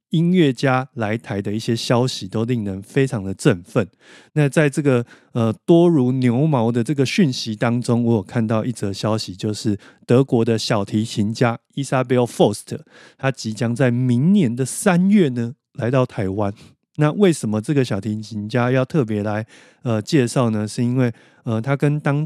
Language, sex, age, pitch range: Chinese, male, 30-49, 110-140 Hz